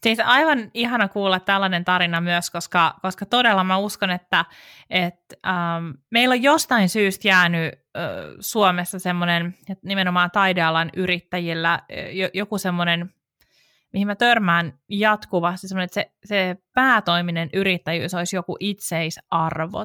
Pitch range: 175-210 Hz